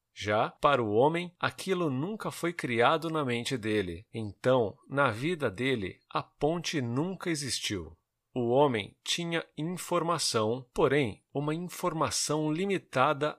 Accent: Brazilian